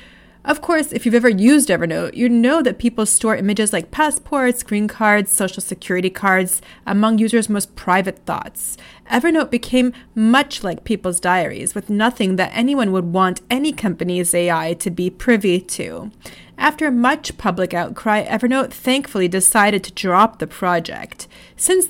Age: 30-49